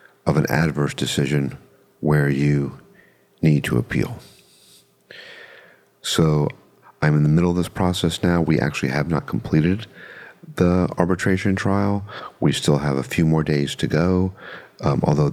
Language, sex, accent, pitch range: English, male, American, 70-90 Hz